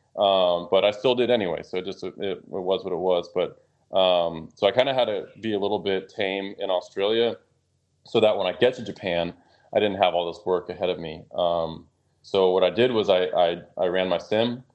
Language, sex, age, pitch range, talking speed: English, male, 20-39, 85-100 Hz, 235 wpm